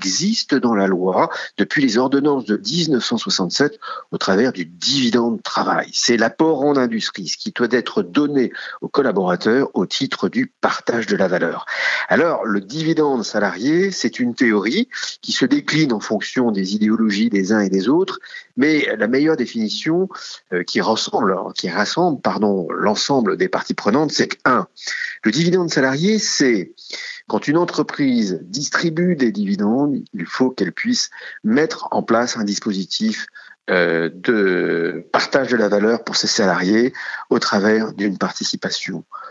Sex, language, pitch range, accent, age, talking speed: male, French, 110-175 Hz, French, 50-69, 150 wpm